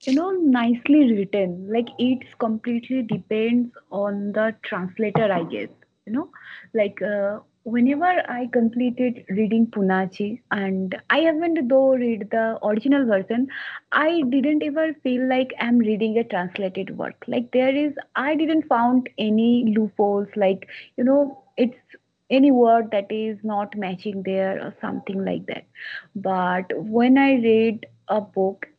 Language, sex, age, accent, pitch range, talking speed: Tamil, female, 20-39, native, 205-265 Hz, 150 wpm